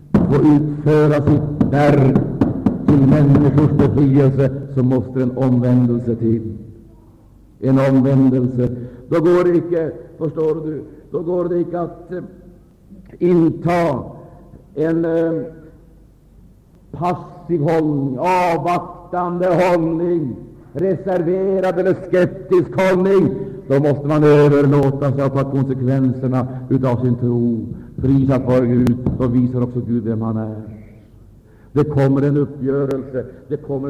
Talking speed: 115 wpm